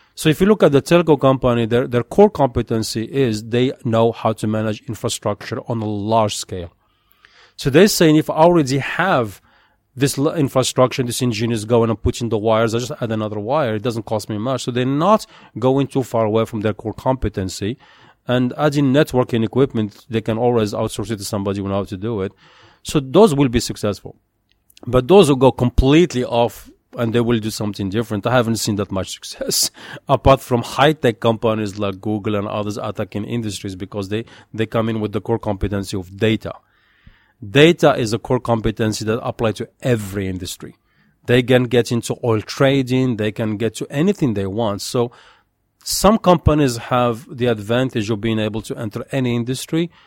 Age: 40-59